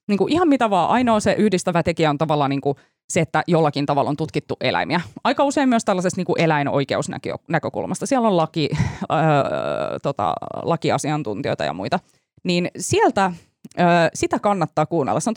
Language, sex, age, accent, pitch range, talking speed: Finnish, female, 20-39, native, 150-200 Hz, 130 wpm